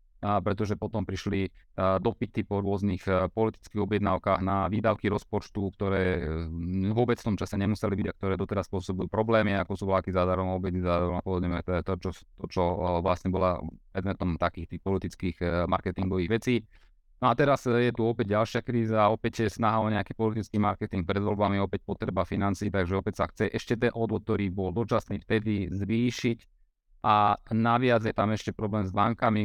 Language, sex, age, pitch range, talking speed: Slovak, male, 30-49, 95-110 Hz, 175 wpm